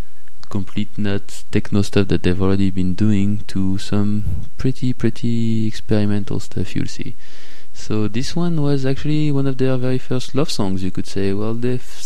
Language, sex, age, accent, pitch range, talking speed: English, male, 20-39, French, 95-115 Hz, 170 wpm